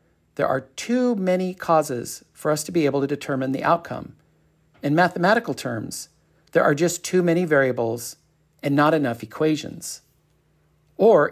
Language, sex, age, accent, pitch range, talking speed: English, male, 50-69, American, 135-175 Hz, 150 wpm